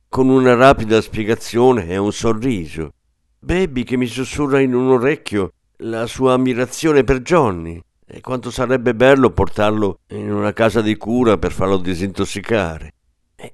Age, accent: 50-69, native